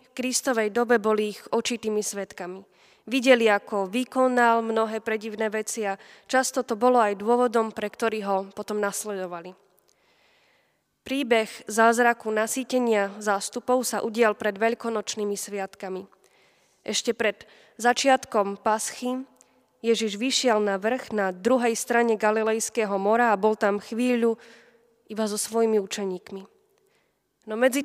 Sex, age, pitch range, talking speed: female, 20-39, 210-240 Hz, 120 wpm